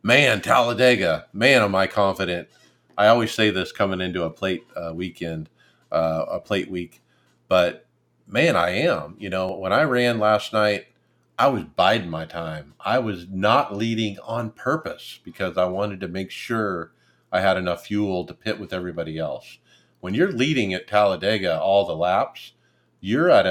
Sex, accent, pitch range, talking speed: male, American, 90-105 Hz, 170 wpm